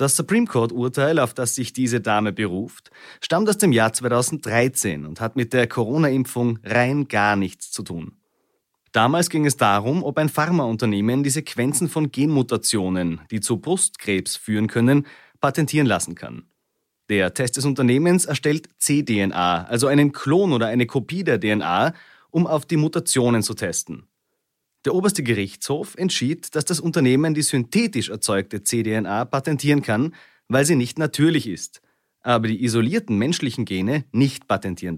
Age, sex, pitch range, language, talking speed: 30-49, male, 115-155 Hz, German, 150 wpm